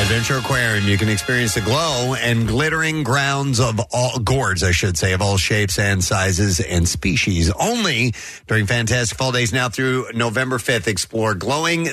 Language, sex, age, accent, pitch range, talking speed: English, male, 40-59, American, 95-125 Hz, 170 wpm